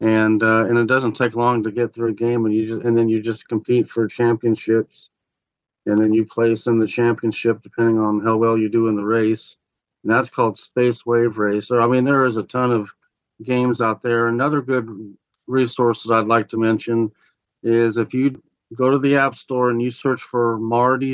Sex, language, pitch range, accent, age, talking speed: male, English, 110-125 Hz, American, 40-59, 215 wpm